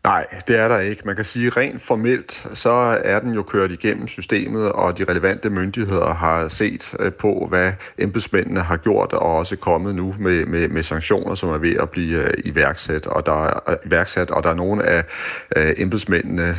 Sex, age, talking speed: male, 40-59, 190 wpm